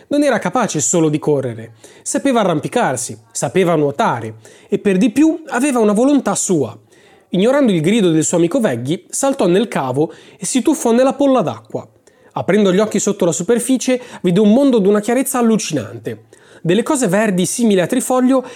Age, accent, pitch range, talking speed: 30-49, native, 160-240 Hz, 170 wpm